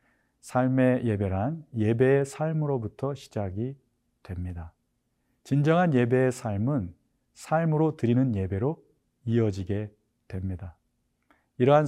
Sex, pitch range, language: male, 105-135 Hz, Korean